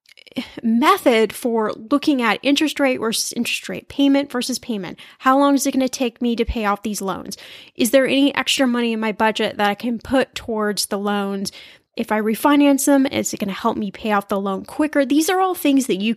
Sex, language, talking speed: female, English, 225 wpm